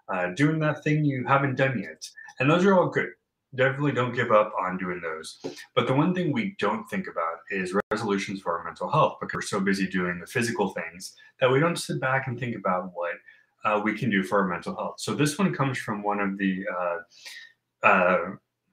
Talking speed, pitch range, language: 220 wpm, 100-150 Hz, English